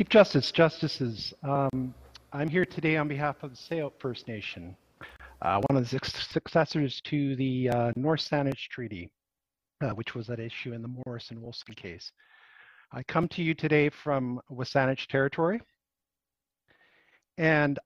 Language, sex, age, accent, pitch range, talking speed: English, male, 50-69, American, 120-155 Hz, 150 wpm